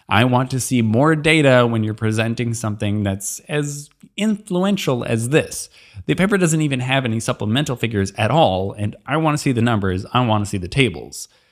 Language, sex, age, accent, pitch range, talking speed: English, male, 20-39, American, 110-150 Hz, 200 wpm